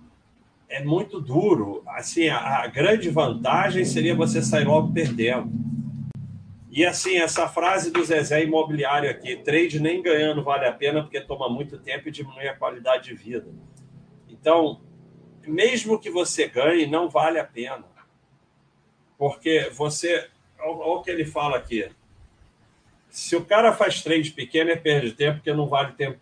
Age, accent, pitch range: 40-59, Brazilian, 120-155 Hz